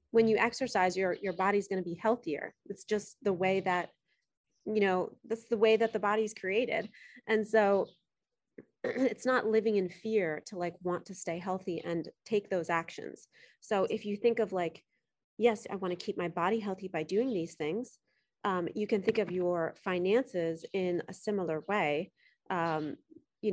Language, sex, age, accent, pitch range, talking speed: English, female, 30-49, American, 180-225 Hz, 185 wpm